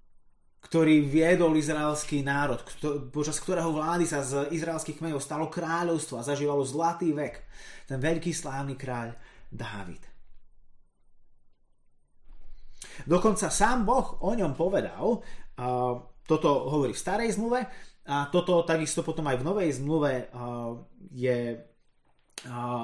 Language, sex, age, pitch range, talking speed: Slovak, male, 30-49, 125-165 Hz, 120 wpm